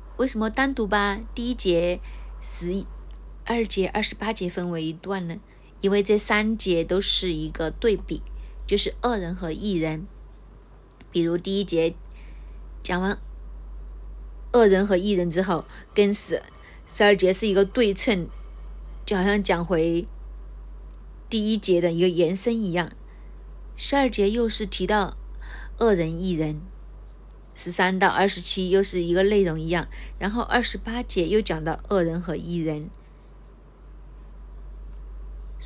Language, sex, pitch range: Chinese, female, 165-210 Hz